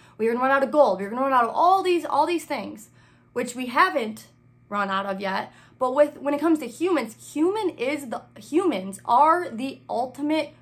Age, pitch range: 20-39, 220-295 Hz